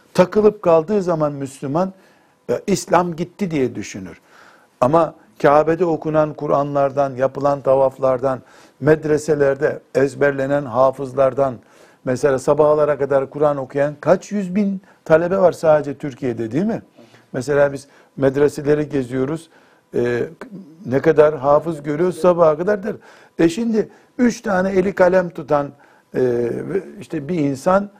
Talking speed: 120 wpm